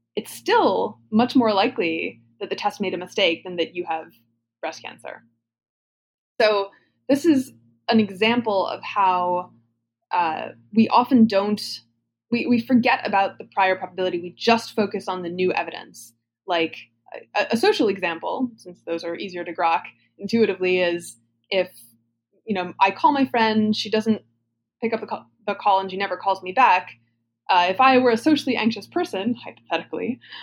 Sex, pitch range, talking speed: female, 170-230 Hz, 165 wpm